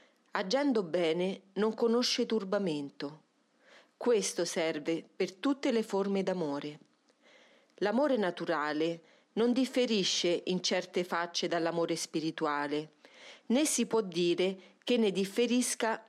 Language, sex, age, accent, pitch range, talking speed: Italian, female, 40-59, native, 170-240 Hz, 105 wpm